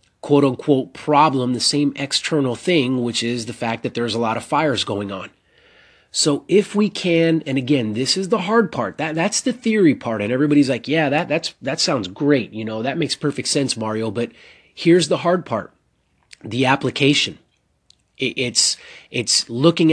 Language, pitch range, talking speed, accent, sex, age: English, 120-150 Hz, 180 wpm, American, male, 30-49